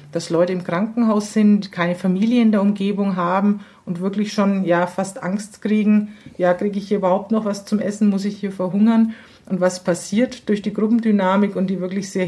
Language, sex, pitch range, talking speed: German, female, 180-215 Hz, 200 wpm